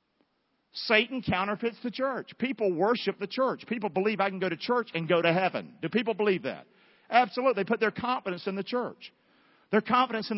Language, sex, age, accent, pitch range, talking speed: English, male, 50-69, American, 175-240 Hz, 195 wpm